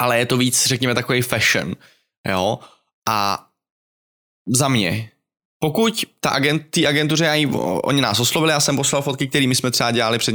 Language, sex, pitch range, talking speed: Czech, male, 110-135 Hz, 155 wpm